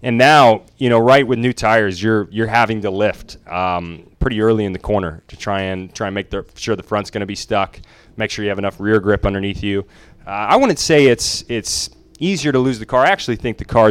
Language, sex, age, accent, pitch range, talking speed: English, male, 30-49, American, 100-120 Hz, 250 wpm